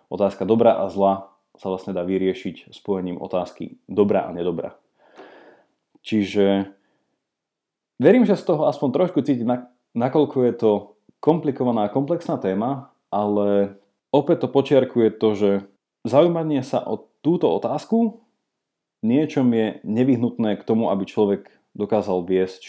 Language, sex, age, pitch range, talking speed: Slovak, male, 20-39, 100-140 Hz, 125 wpm